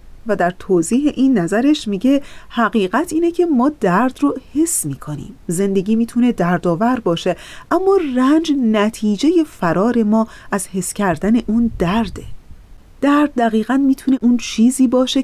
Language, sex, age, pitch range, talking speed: Persian, female, 30-49, 175-255 Hz, 135 wpm